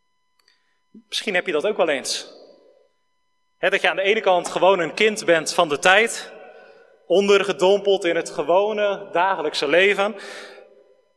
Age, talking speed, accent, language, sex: 30-49, 140 wpm, Dutch, Dutch, male